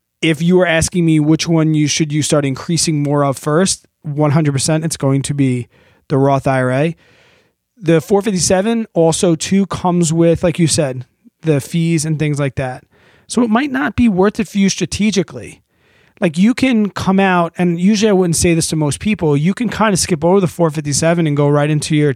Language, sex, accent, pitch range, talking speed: English, male, American, 150-190 Hz, 205 wpm